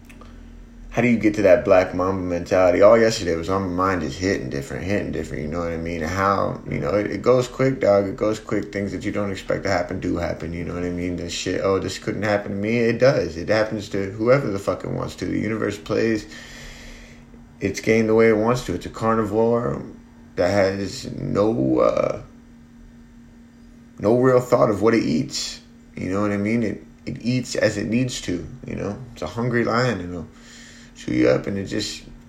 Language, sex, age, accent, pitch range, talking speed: English, male, 30-49, American, 90-115 Hz, 225 wpm